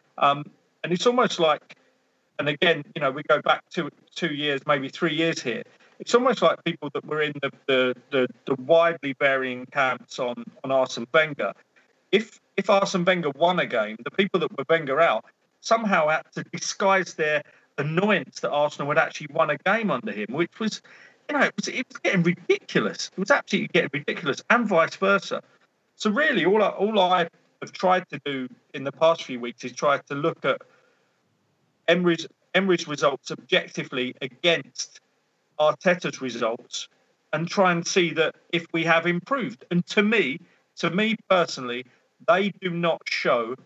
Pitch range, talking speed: 145-195 Hz, 175 wpm